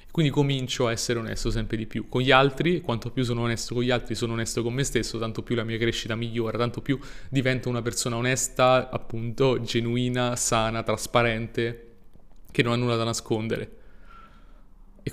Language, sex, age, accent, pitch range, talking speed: Italian, male, 30-49, native, 115-125 Hz, 185 wpm